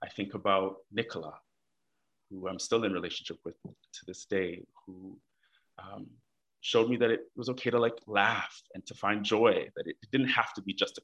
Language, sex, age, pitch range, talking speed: English, male, 20-39, 90-100 Hz, 195 wpm